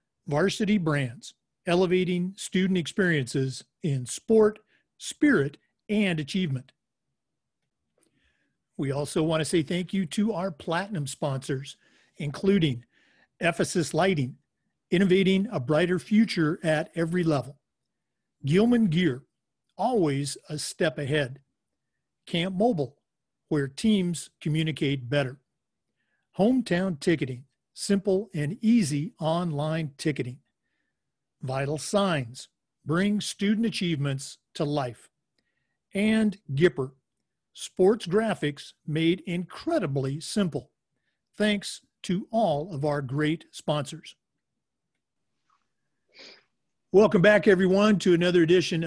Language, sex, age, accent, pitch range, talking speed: English, male, 50-69, American, 145-195 Hz, 95 wpm